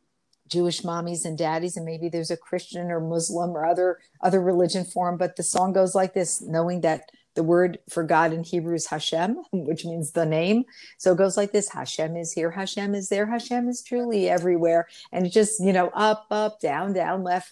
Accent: American